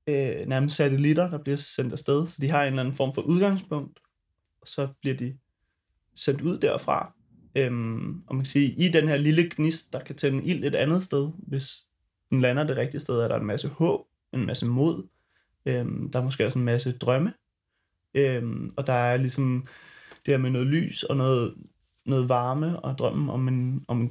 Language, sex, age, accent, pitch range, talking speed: Danish, male, 20-39, native, 125-150 Hz, 205 wpm